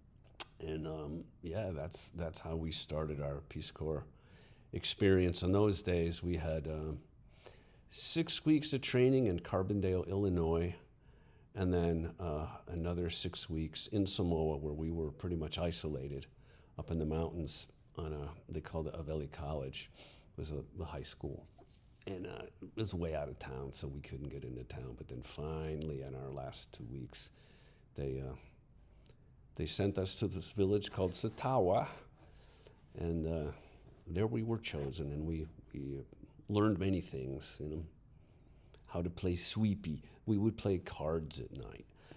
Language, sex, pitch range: English, male, 75-100 Hz